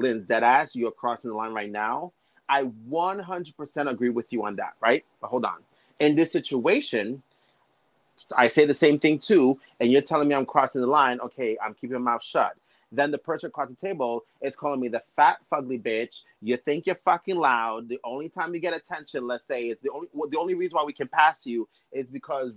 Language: English